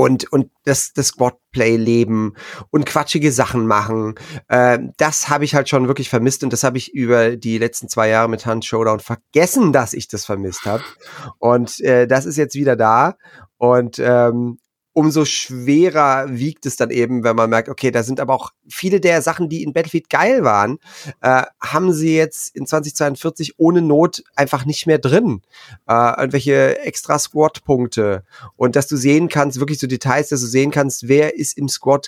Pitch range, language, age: 125-155 Hz, German, 30-49